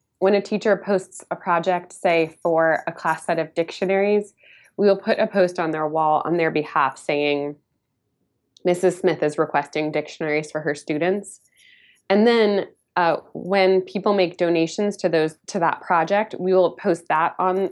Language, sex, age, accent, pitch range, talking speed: English, female, 20-39, American, 155-190 Hz, 170 wpm